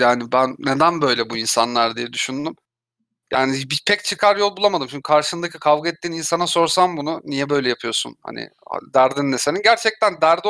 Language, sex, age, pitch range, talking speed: Turkish, male, 40-59, 140-180 Hz, 170 wpm